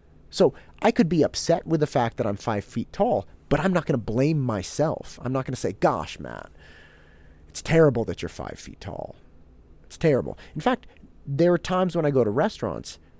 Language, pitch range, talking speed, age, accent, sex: English, 100-150 Hz, 210 wpm, 30-49, American, male